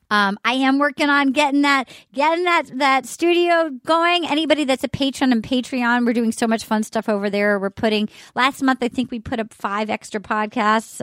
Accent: American